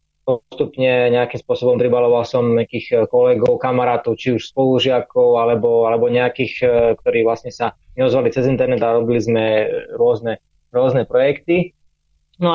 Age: 20-39